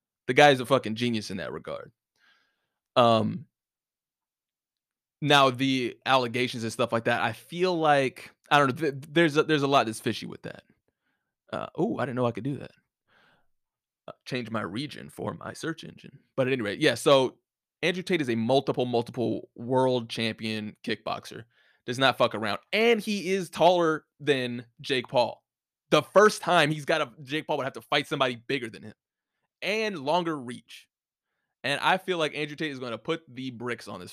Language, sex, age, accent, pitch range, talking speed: English, male, 20-39, American, 115-150 Hz, 190 wpm